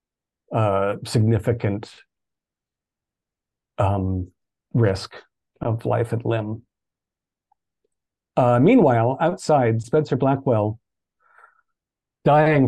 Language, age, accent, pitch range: English, 40-59, American, 110-145 Hz